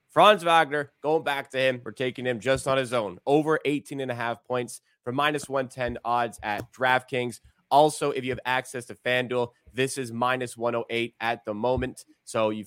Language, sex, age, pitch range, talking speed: English, male, 20-39, 115-140 Hz, 195 wpm